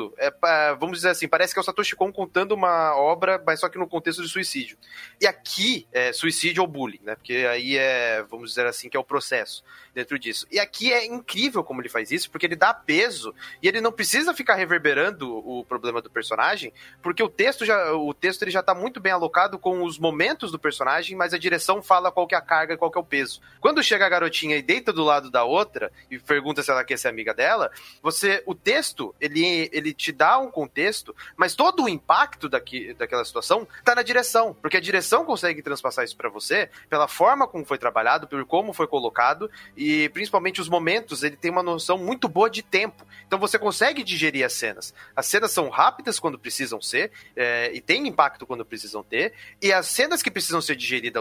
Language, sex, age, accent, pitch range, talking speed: Portuguese, male, 30-49, Brazilian, 145-190 Hz, 220 wpm